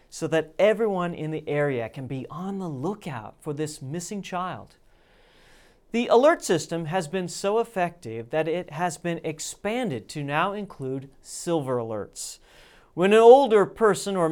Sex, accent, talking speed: male, American, 155 wpm